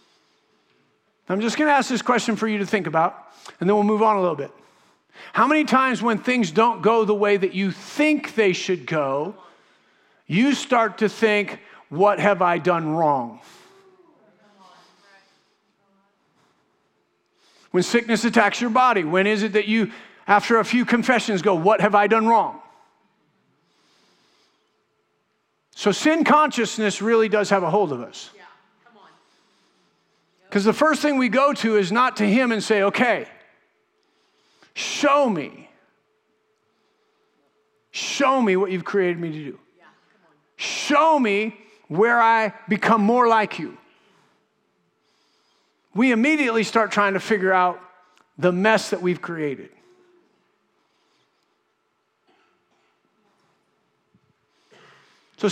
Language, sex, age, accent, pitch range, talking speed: English, male, 50-69, American, 195-245 Hz, 130 wpm